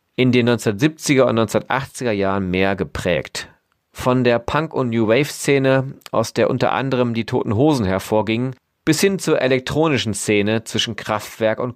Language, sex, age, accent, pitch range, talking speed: German, male, 40-59, German, 105-135 Hz, 150 wpm